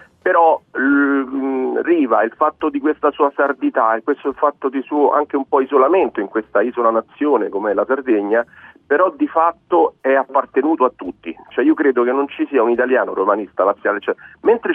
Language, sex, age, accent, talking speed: Italian, male, 40-59, native, 190 wpm